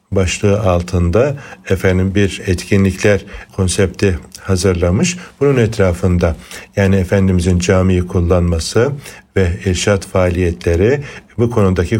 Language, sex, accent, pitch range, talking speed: Turkish, male, native, 90-105 Hz, 90 wpm